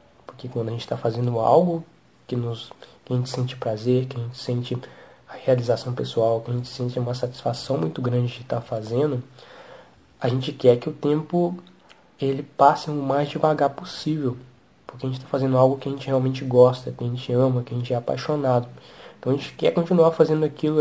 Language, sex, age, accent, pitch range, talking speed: English, male, 20-39, Brazilian, 125-150 Hz, 195 wpm